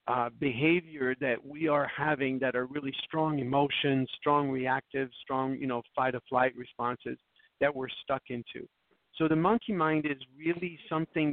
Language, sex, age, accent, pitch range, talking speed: English, male, 50-69, American, 130-155 Hz, 165 wpm